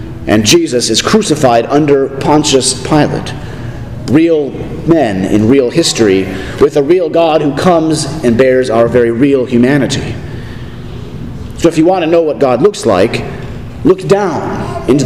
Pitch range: 125-175 Hz